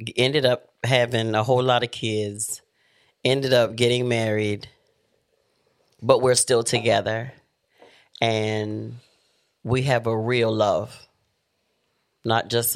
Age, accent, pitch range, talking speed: 30-49, American, 110-125 Hz, 115 wpm